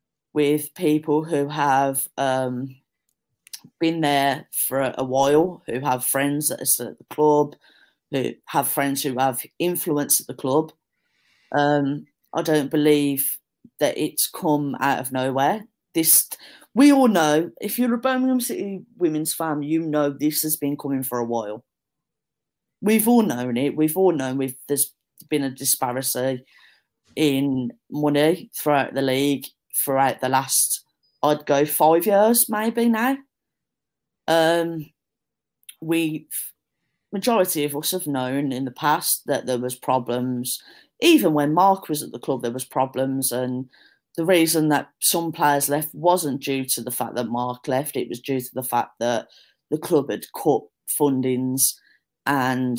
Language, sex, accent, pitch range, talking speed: English, female, British, 130-160 Hz, 155 wpm